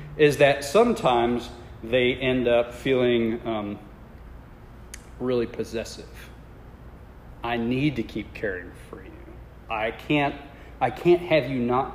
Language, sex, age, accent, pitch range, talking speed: English, male, 40-59, American, 105-135 Hz, 120 wpm